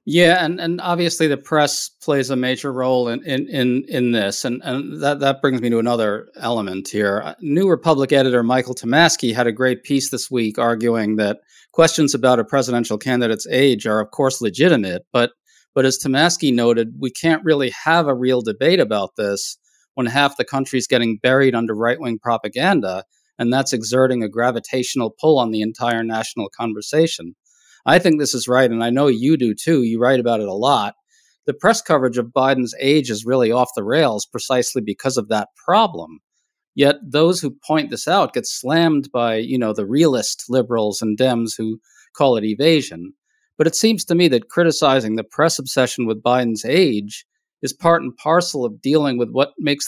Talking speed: 190 wpm